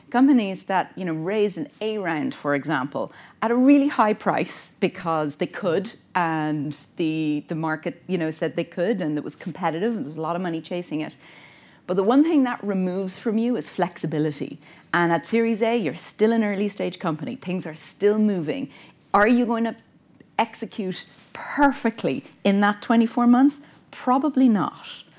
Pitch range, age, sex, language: 155-225 Hz, 30-49, female, English